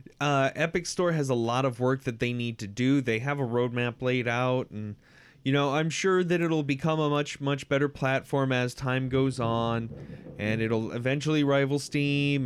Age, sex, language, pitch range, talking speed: 20-39, male, English, 120-150 Hz, 195 wpm